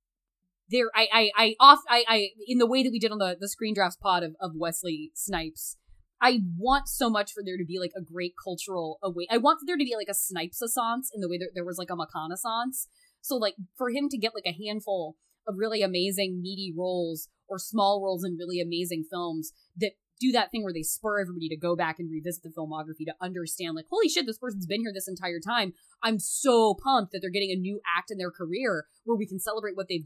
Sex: female